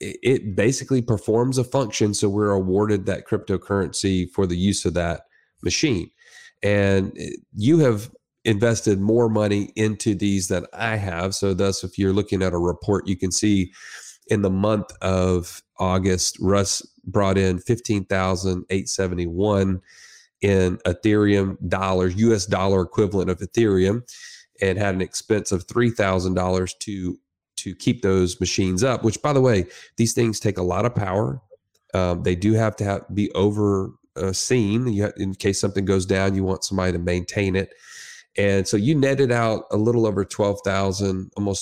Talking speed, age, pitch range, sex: 155 wpm, 30-49, 95-105 Hz, male